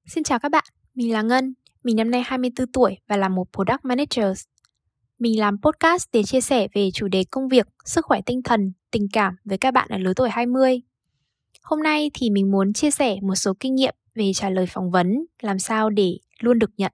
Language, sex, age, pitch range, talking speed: Vietnamese, female, 10-29, 195-245 Hz, 225 wpm